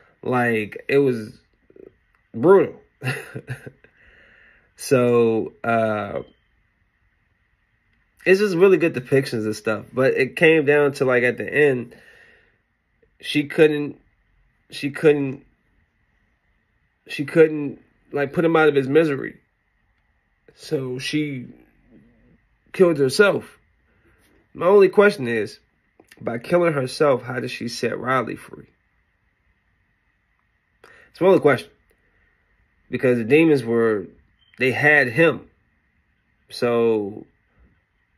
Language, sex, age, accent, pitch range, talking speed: English, male, 30-49, American, 110-145 Hz, 100 wpm